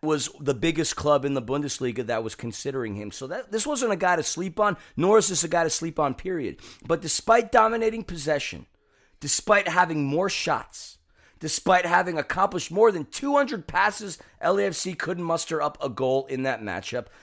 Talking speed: 180 wpm